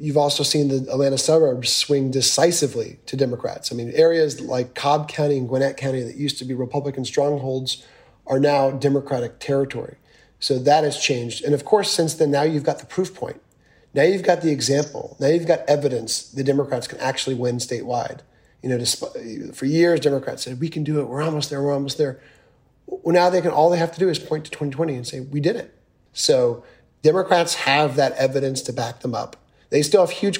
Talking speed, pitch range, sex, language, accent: 210 wpm, 130-150 Hz, male, English, American